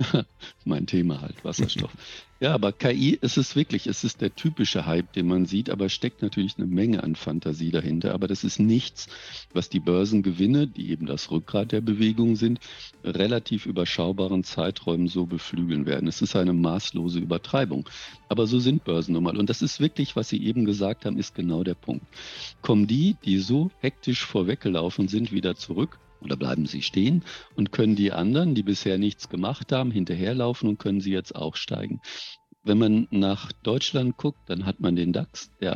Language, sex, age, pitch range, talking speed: German, male, 50-69, 90-115 Hz, 185 wpm